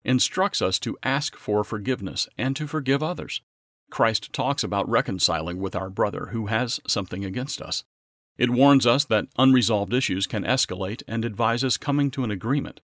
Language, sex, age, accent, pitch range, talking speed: English, male, 40-59, American, 90-125 Hz, 165 wpm